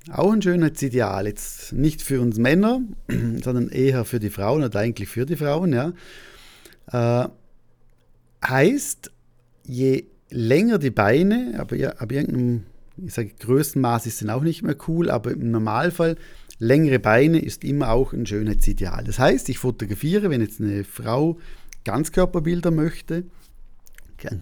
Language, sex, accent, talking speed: German, male, German, 150 wpm